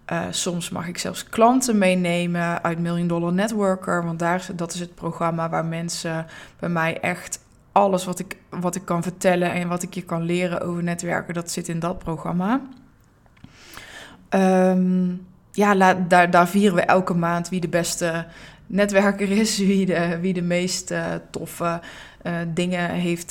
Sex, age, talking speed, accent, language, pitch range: female, 20-39, 155 wpm, Dutch, Dutch, 170-185 Hz